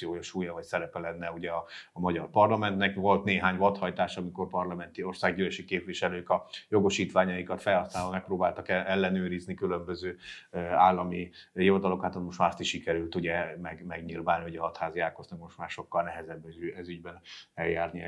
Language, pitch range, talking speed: Hungarian, 85-100 Hz, 140 wpm